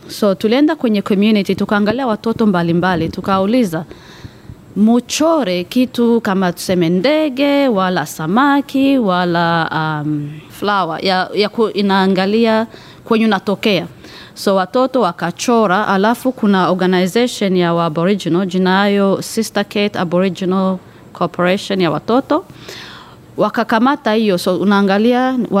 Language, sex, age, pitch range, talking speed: Swahili, female, 20-39, 180-225 Hz, 100 wpm